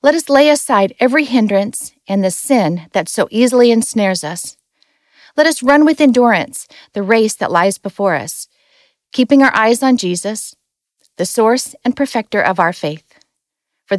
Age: 40-59